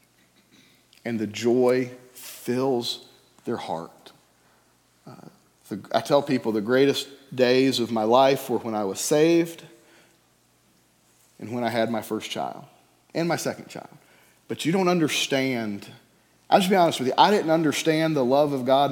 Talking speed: 155 wpm